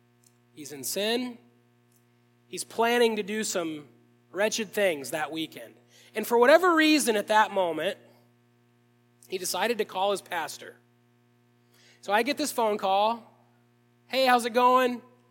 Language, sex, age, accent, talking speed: English, male, 20-39, American, 135 wpm